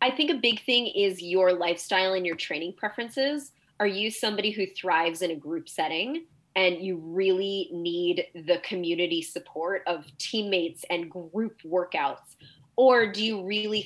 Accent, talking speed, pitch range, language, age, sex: American, 160 wpm, 175-205 Hz, English, 20-39, female